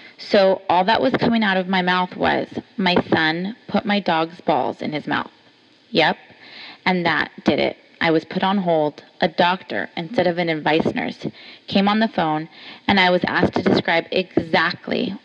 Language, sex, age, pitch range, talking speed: English, female, 20-39, 175-220 Hz, 185 wpm